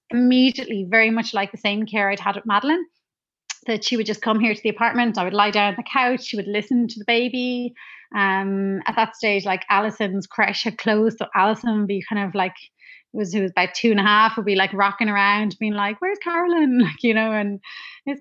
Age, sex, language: 30-49, female, English